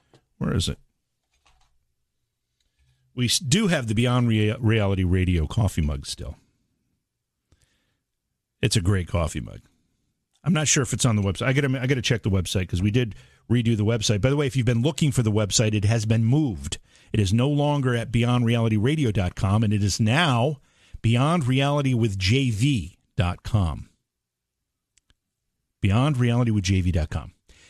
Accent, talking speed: American, 140 wpm